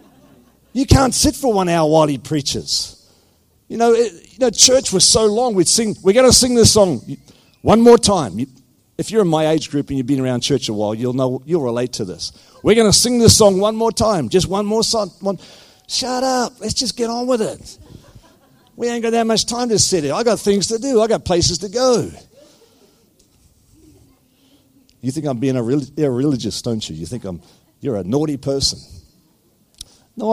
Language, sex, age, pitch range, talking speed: English, male, 50-69, 135-210 Hz, 210 wpm